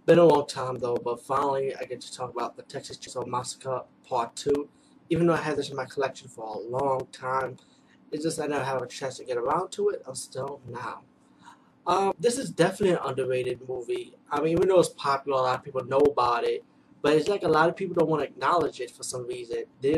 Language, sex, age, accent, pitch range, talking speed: English, male, 20-39, American, 145-240 Hz, 245 wpm